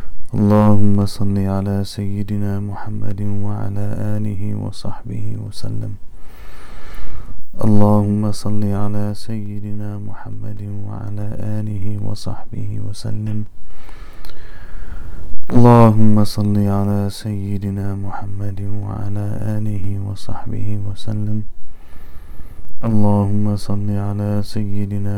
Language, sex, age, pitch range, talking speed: English, male, 20-39, 100-105 Hz, 75 wpm